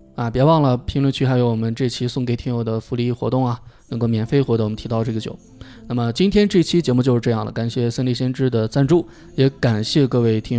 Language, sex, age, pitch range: Chinese, male, 20-39, 120-140 Hz